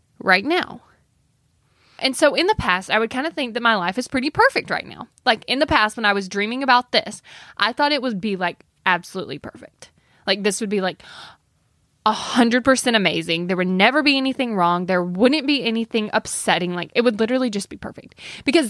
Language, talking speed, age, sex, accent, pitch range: English, 205 wpm, 10-29, female, American, 200-285 Hz